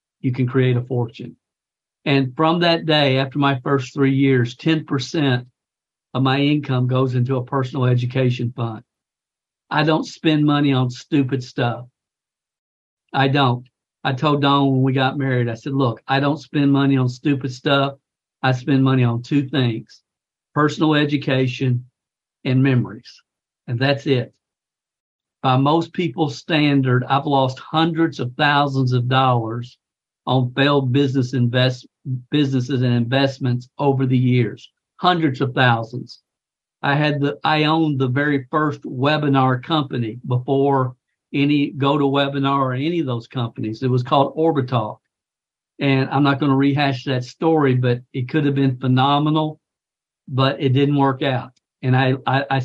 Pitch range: 125-145 Hz